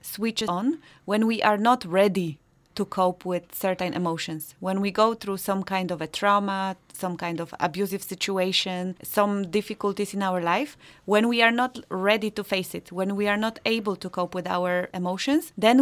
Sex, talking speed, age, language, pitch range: female, 190 wpm, 30-49, English, 180-215 Hz